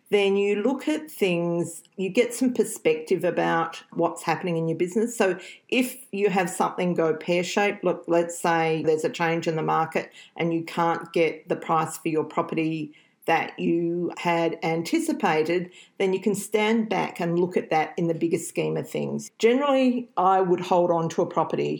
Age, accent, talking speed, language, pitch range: 40-59, Australian, 185 wpm, English, 165-200 Hz